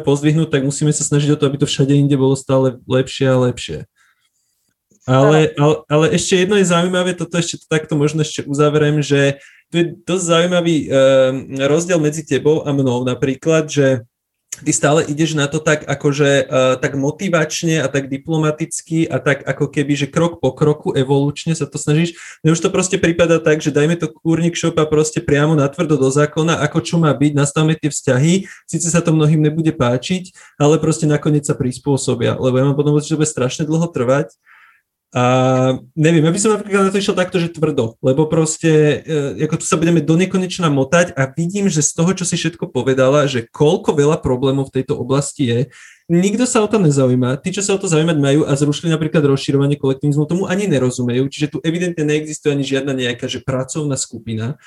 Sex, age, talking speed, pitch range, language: male, 20-39, 195 wpm, 135-165 Hz, Slovak